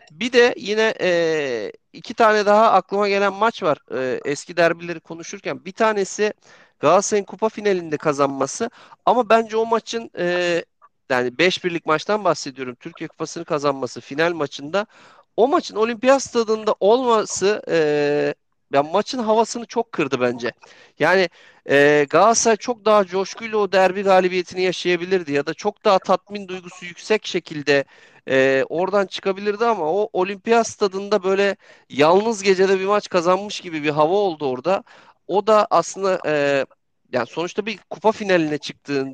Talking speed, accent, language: 145 wpm, native, Turkish